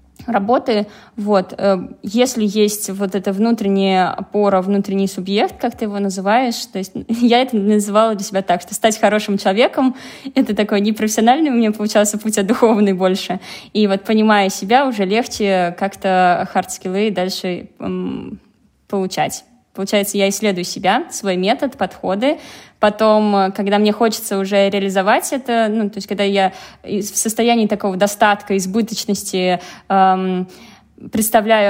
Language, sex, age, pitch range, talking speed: Russian, female, 20-39, 195-225 Hz, 140 wpm